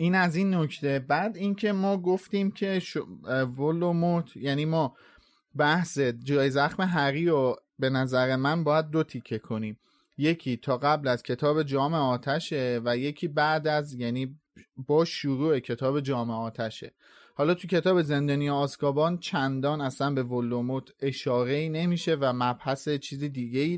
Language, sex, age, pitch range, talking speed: Persian, male, 30-49, 130-165 Hz, 140 wpm